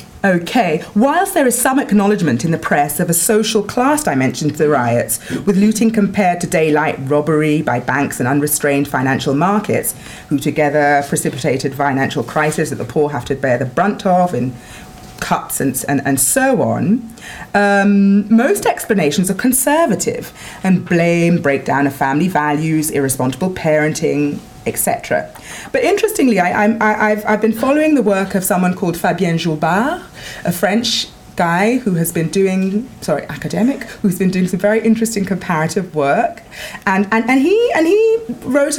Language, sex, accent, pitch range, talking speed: English, female, British, 155-225 Hz, 155 wpm